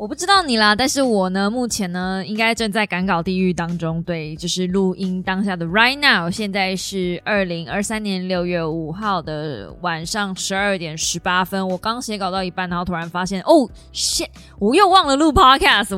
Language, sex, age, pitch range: Chinese, female, 20-39, 175-230 Hz